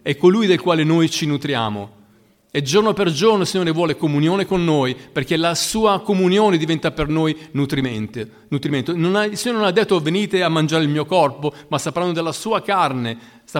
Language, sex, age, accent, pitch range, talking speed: Italian, male, 40-59, native, 150-205 Hz, 190 wpm